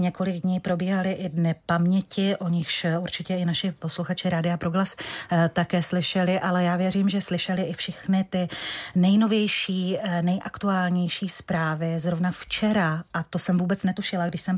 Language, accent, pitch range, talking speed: Czech, native, 175-190 Hz, 150 wpm